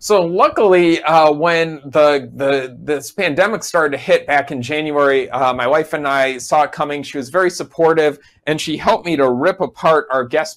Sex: male